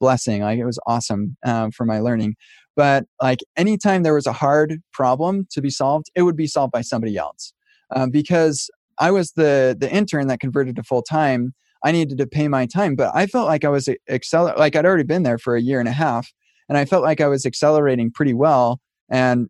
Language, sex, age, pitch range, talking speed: English, male, 20-39, 125-155 Hz, 225 wpm